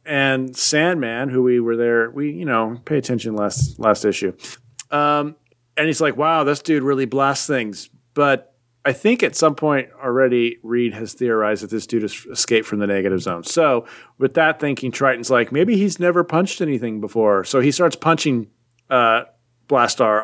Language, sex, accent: English, male, American